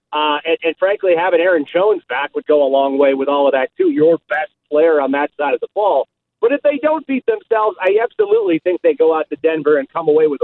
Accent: American